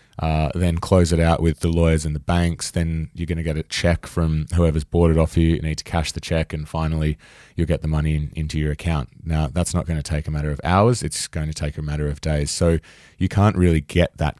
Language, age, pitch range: English, 20-39, 75-90 Hz